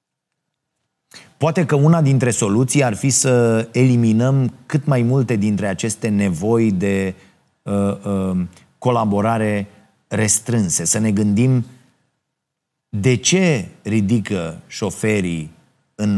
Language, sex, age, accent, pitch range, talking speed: Romanian, male, 30-49, native, 100-130 Hz, 95 wpm